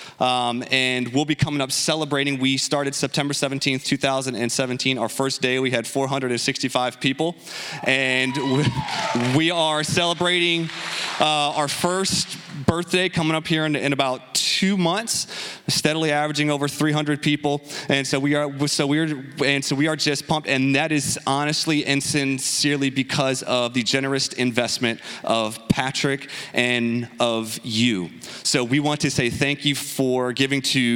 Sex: male